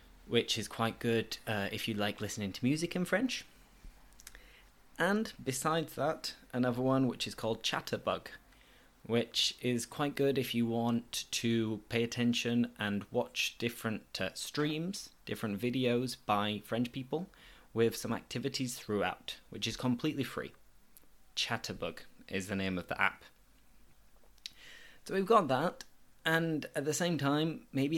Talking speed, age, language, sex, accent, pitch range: 145 wpm, 20-39, English, male, British, 115-140 Hz